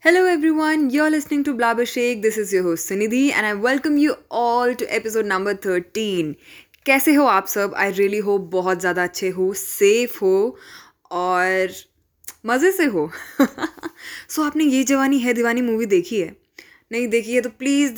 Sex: female